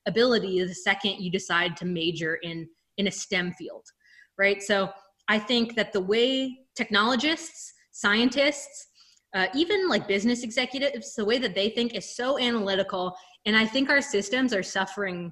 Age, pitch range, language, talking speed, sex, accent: 20-39, 185-240 Hz, English, 165 wpm, female, American